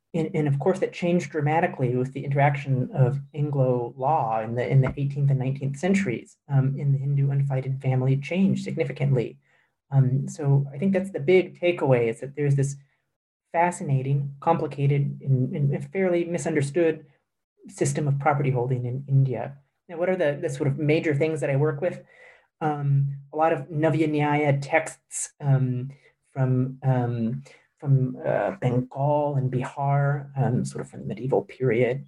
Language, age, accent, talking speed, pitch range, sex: English, 30-49, American, 165 wpm, 135-160 Hz, male